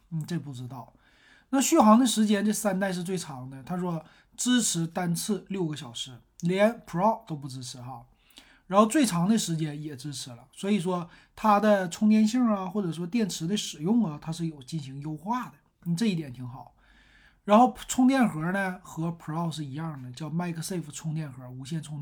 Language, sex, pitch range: Chinese, male, 155-215 Hz